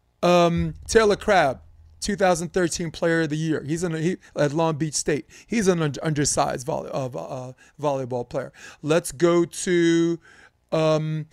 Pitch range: 150-180 Hz